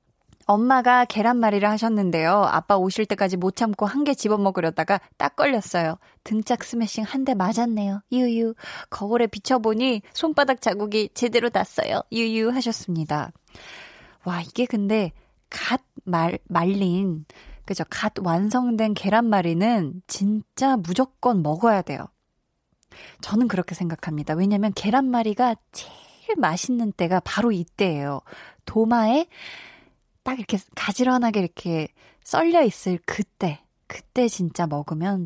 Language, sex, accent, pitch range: Korean, female, native, 185-245 Hz